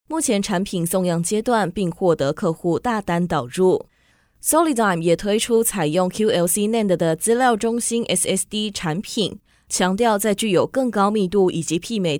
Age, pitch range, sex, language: 20-39, 170-225 Hz, female, Chinese